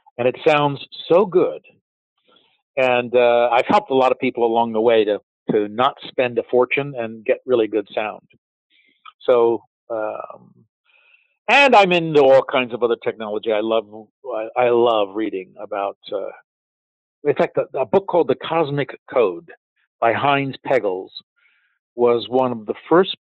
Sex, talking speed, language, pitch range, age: male, 160 wpm, English, 115-145 Hz, 50-69